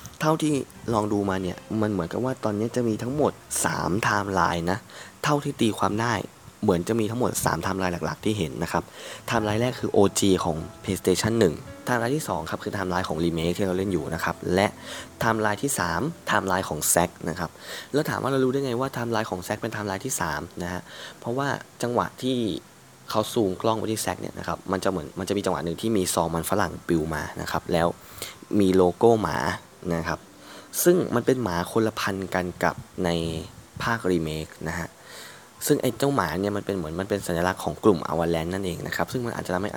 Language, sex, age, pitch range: Thai, male, 20-39, 90-115 Hz